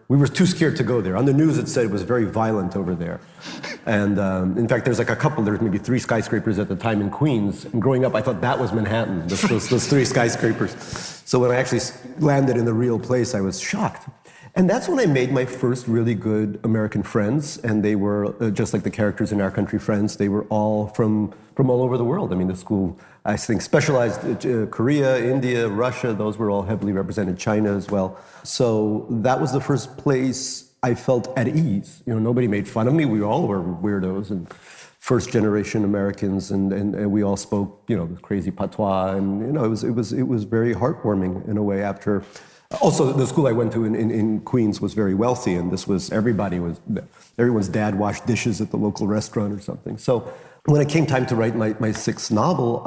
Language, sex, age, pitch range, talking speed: English, male, 40-59, 100-125 Hz, 225 wpm